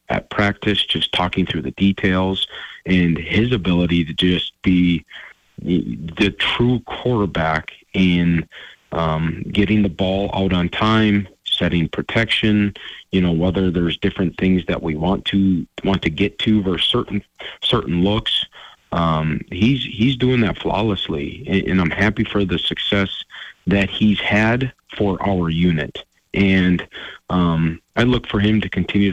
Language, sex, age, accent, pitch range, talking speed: English, male, 30-49, American, 90-105 Hz, 145 wpm